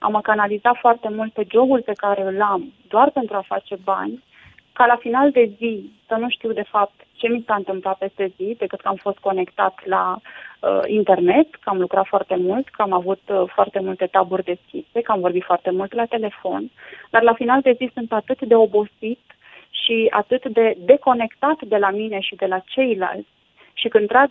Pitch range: 195-250 Hz